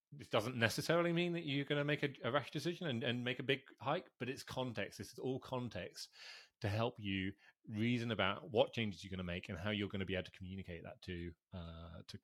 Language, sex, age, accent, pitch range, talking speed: English, male, 30-49, British, 90-115 Hz, 240 wpm